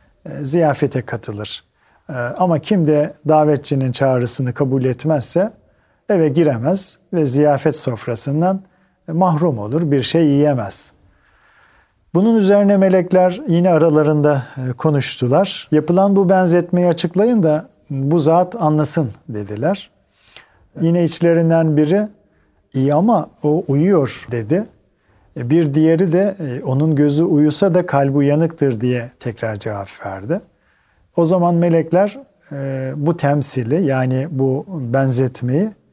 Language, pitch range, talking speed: Turkish, 130-175 Hz, 105 wpm